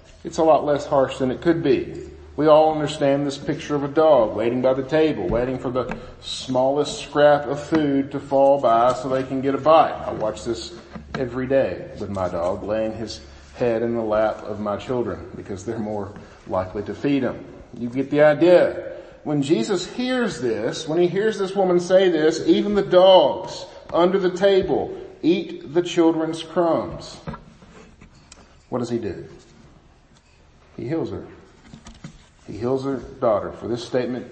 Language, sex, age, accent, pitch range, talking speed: English, male, 50-69, American, 110-145 Hz, 175 wpm